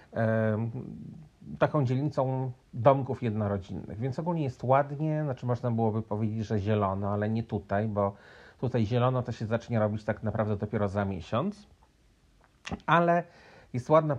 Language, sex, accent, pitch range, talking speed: Polish, male, native, 105-135 Hz, 135 wpm